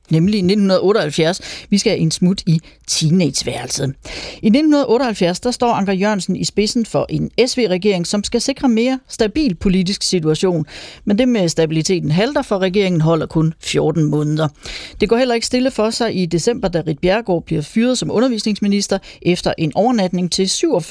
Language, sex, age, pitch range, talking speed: Danish, female, 40-59, 170-225 Hz, 165 wpm